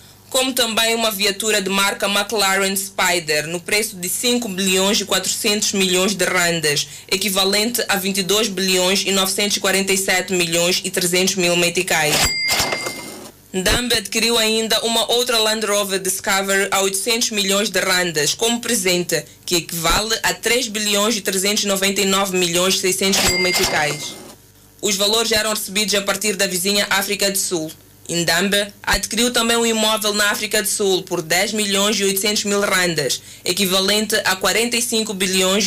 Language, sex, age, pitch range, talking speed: Portuguese, female, 20-39, 185-210 Hz, 150 wpm